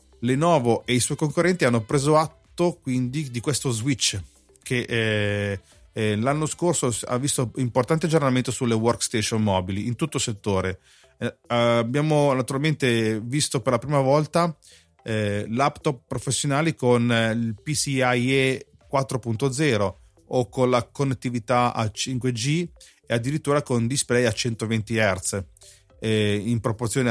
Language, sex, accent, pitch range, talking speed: Italian, male, native, 110-140 Hz, 130 wpm